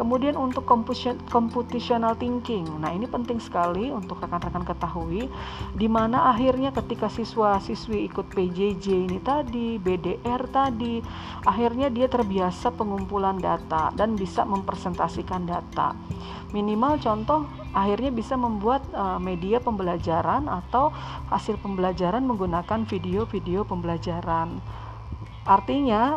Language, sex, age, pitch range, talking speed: Indonesian, female, 40-59, 185-245 Hz, 105 wpm